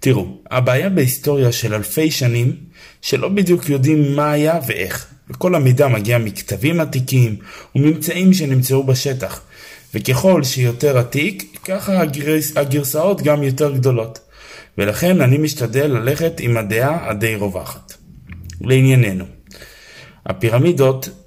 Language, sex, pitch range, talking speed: Hebrew, male, 115-150 Hz, 105 wpm